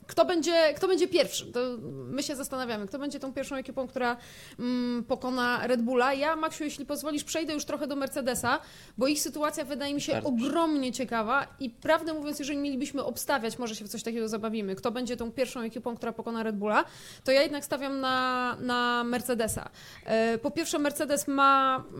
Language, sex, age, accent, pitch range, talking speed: Polish, female, 20-39, native, 230-280 Hz, 185 wpm